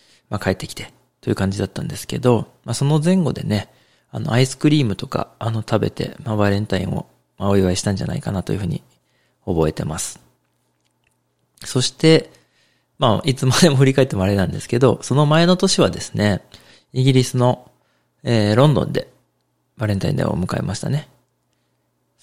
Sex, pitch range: male, 95-125 Hz